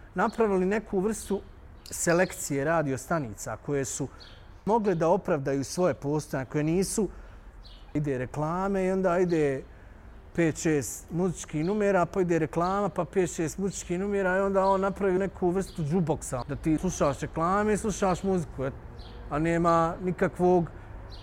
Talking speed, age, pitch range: 130 wpm, 40-59, 150-200 Hz